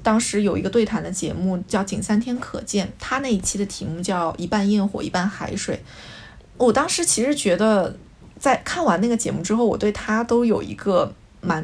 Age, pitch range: 20-39, 190-230 Hz